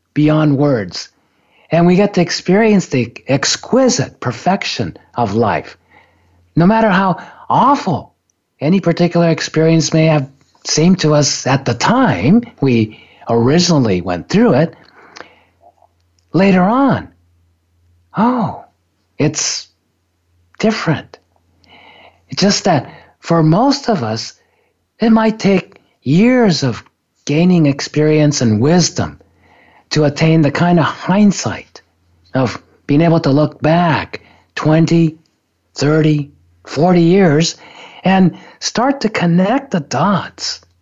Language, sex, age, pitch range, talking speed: English, male, 50-69, 110-180 Hz, 110 wpm